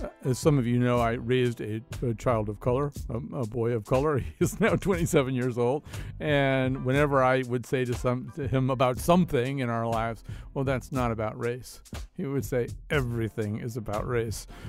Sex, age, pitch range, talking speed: male, 50-69, 115-140 Hz, 195 wpm